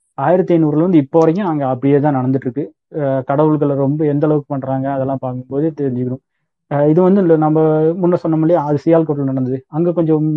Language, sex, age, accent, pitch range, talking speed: Tamil, male, 30-49, native, 135-160 Hz, 150 wpm